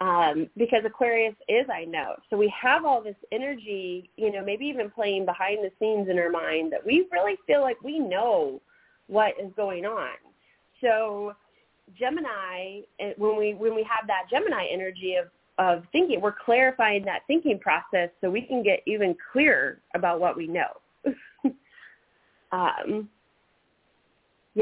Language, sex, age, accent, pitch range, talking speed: English, female, 30-49, American, 175-230 Hz, 155 wpm